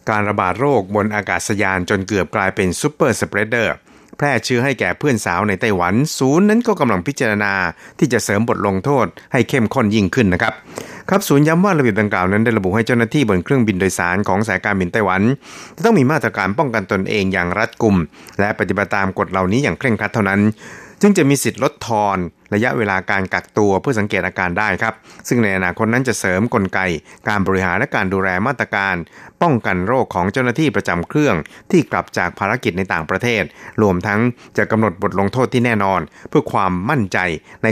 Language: Thai